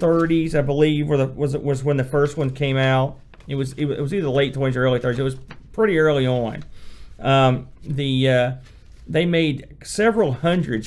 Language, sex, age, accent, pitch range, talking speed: English, male, 40-59, American, 120-145 Hz, 175 wpm